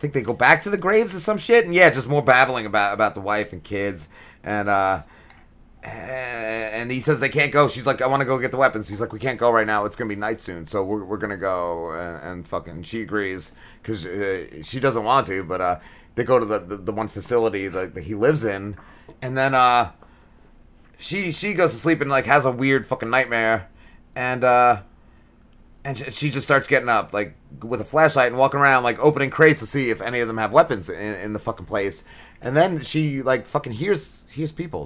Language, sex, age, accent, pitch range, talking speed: English, male, 30-49, American, 105-140 Hz, 230 wpm